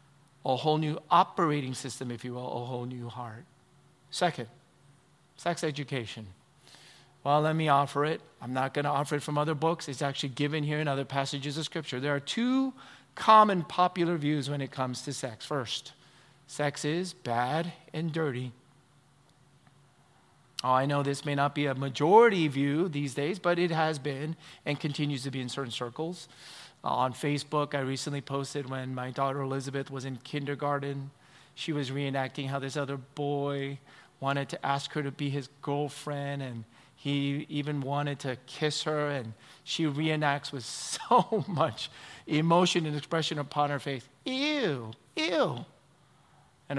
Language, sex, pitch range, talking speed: English, male, 135-150 Hz, 165 wpm